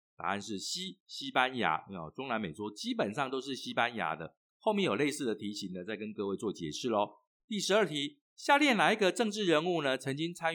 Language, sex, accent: Chinese, male, native